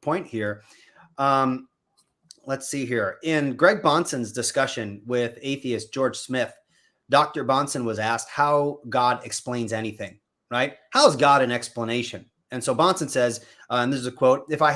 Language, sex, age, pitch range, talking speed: English, male, 30-49, 120-155 Hz, 160 wpm